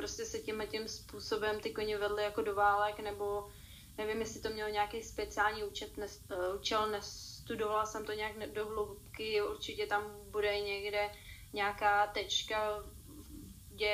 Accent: native